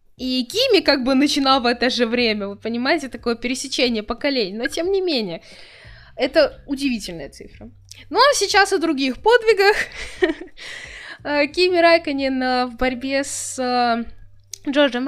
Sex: female